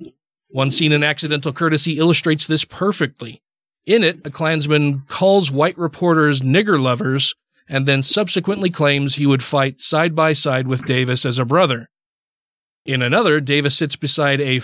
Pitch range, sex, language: 135-160 Hz, male, English